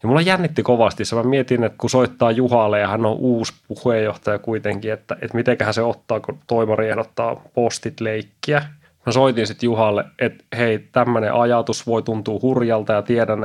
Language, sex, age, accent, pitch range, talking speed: Finnish, male, 20-39, native, 110-135 Hz, 175 wpm